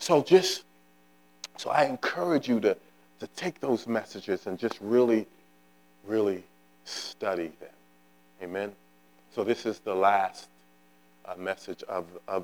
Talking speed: 130 wpm